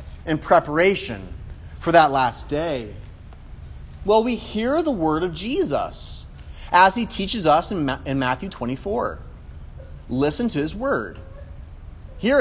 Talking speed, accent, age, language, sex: 125 wpm, American, 30-49, English, male